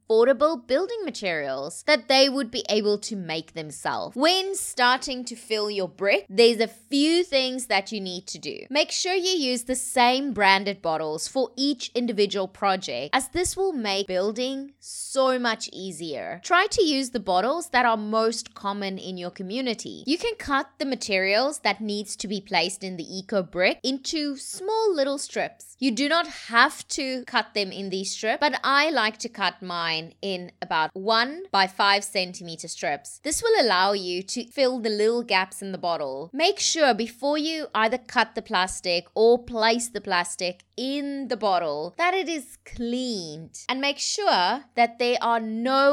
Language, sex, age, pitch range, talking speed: English, female, 20-39, 190-275 Hz, 180 wpm